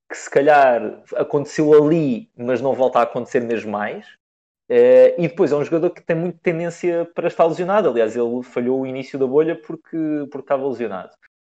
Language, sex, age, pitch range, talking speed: Portuguese, male, 20-39, 125-165 Hz, 190 wpm